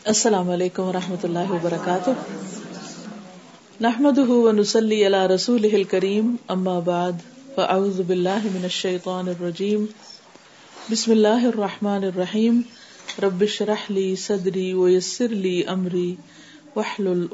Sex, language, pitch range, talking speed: female, Urdu, 185-220 Hz, 105 wpm